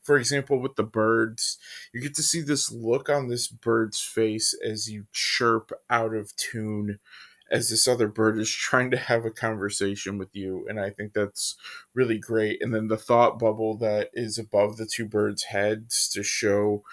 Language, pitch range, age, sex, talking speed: English, 105-125 Hz, 20-39, male, 190 wpm